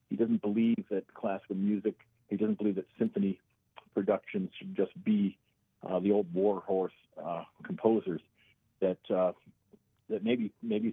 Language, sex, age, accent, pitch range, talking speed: English, male, 40-59, American, 100-120 Hz, 150 wpm